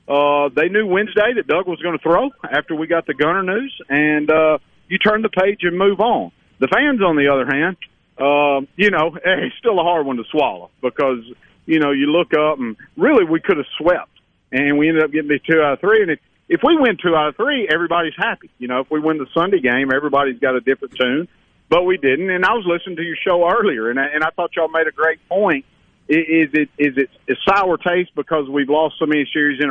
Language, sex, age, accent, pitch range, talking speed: English, male, 50-69, American, 130-175 Hz, 245 wpm